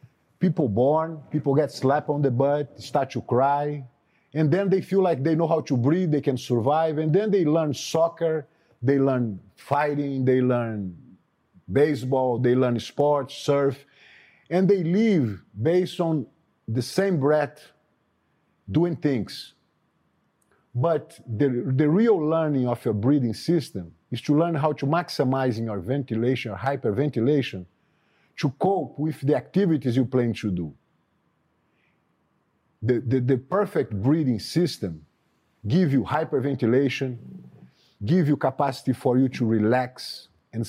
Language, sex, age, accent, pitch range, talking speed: English, male, 50-69, Brazilian, 125-155 Hz, 140 wpm